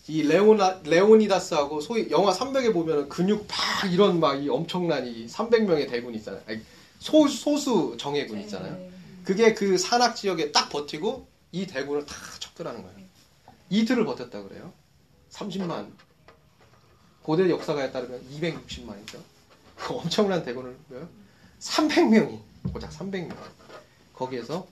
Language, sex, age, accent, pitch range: Korean, male, 30-49, native, 145-215 Hz